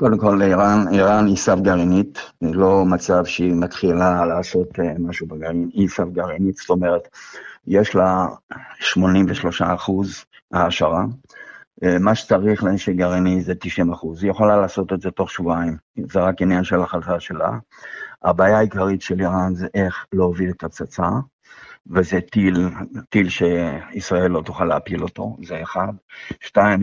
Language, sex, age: Hebrew, male, 50-69